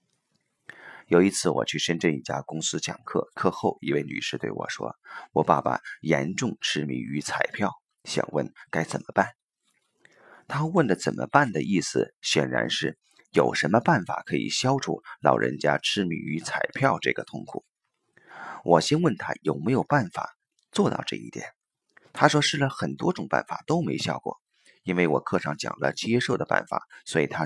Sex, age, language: male, 30-49, Chinese